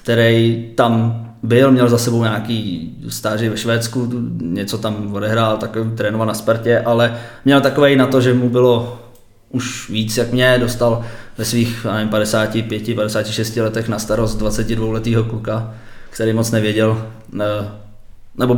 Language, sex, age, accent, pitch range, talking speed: Czech, male, 20-39, native, 110-120 Hz, 140 wpm